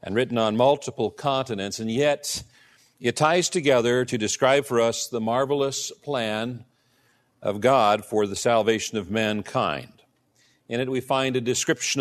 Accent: American